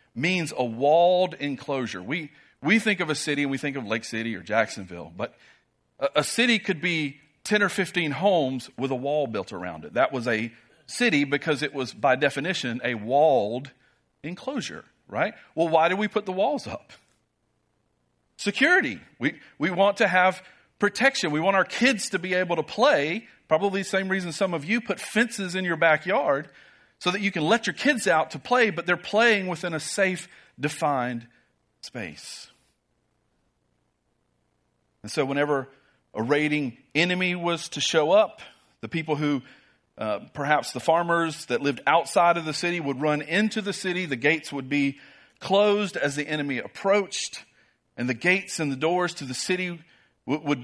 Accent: American